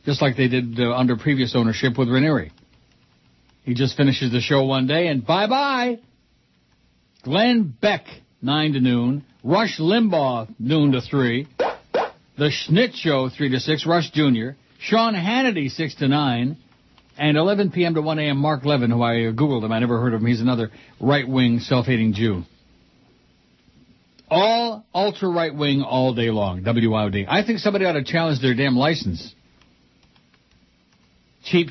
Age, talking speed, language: 60-79, 155 wpm, English